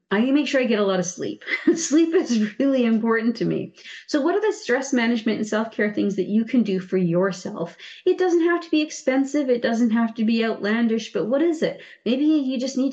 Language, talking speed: English, 230 wpm